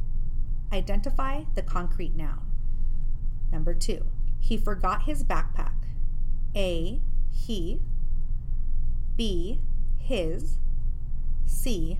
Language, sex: English, female